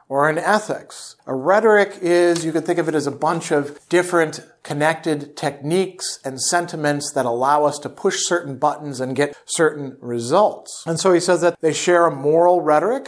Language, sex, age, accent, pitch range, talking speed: English, male, 50-69, American, 135-170 Hz, 190 wpm